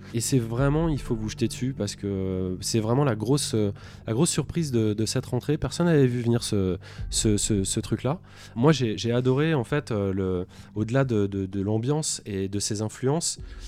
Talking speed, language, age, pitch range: 205 wpm, French, 20-39, 100-125 Hz